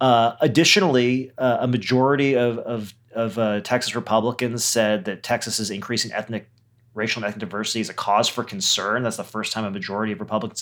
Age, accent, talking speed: 30-49, American, 185 wpm